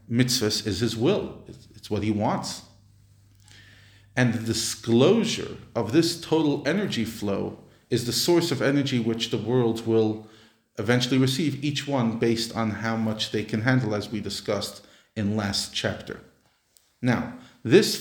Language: English